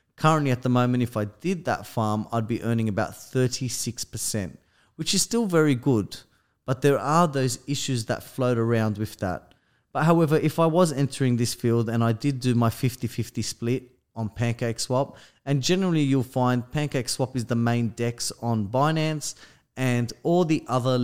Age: 20-39